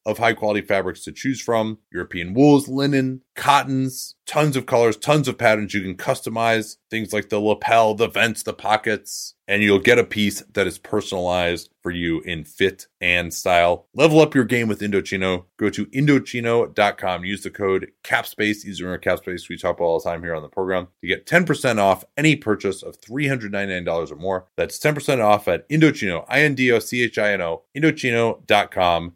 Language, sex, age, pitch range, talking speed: English, male, 30-49, 95-135 Hz, 180 wpm